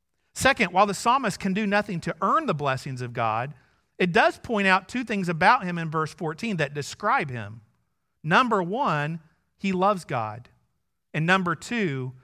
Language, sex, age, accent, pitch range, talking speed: English, male, 40-59, American, 140-200 Hz, 170 wpm